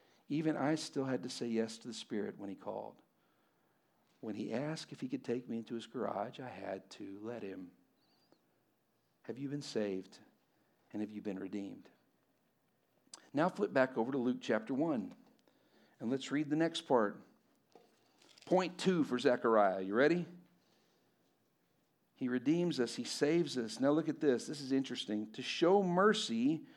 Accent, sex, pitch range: American, male, 145-230 Hz